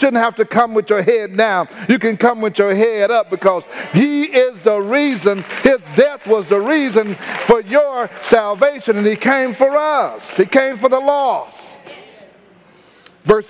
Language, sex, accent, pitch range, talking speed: English, male, American, 200-260 Hz, 175 wpm